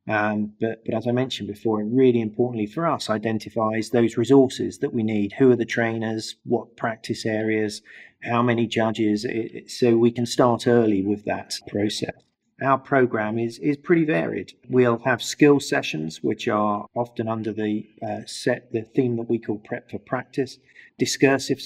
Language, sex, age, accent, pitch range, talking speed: English, male, 40-59, British, 110-125 Hz, 170 wpm